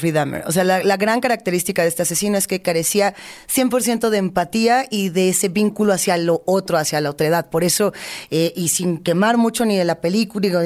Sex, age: female, 20-39